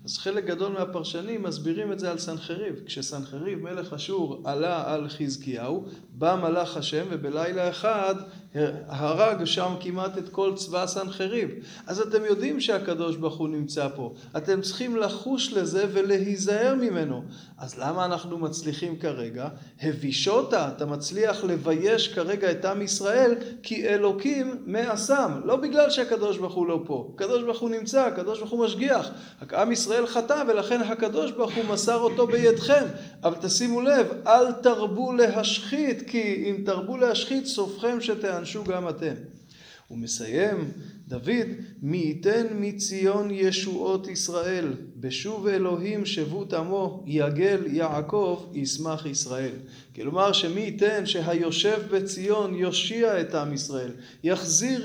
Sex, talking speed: male, 130 wpm